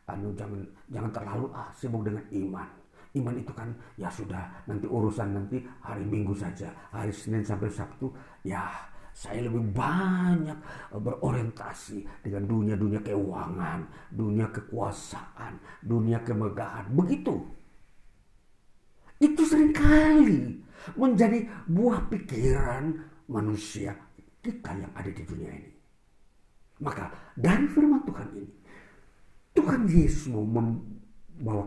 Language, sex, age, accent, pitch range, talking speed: Indonesian, male, 50-69, native, 100-145 Hz, 105 wpm